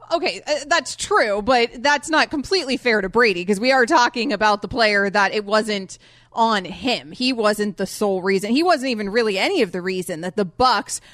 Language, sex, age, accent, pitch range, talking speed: English, female, 30-49, American, 195-270 Hz, 205 wpm